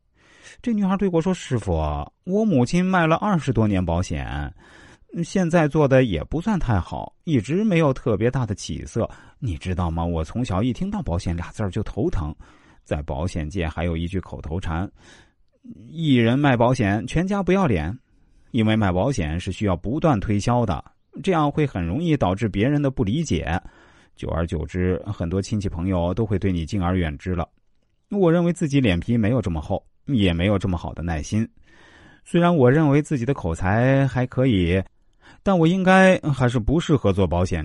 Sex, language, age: male, Chinese, 30-49